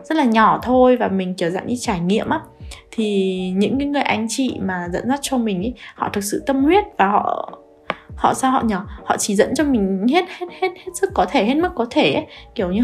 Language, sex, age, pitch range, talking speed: Vietnamese, female, 20-39, 200-280 Hz, 255 wpm